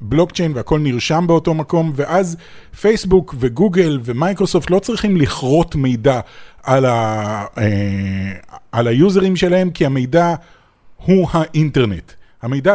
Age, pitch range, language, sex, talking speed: 30-49, 130-175 Hz, Hebrew, male, 115 wpm